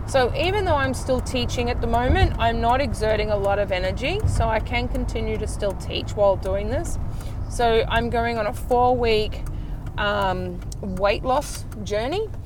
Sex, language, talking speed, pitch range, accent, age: female, English, 180 wpm, 95-115 Hz, Australian, 20-39